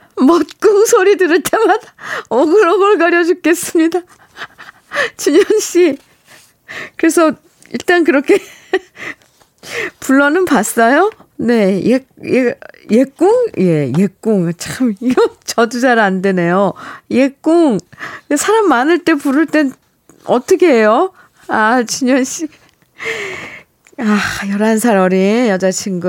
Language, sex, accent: Korean, female, native